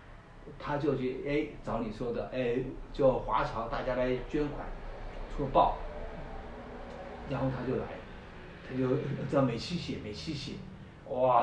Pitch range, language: 115-160 Hz, Chinese